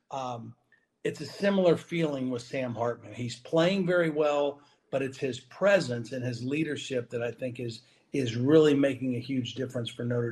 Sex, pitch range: male, 130-155 Hz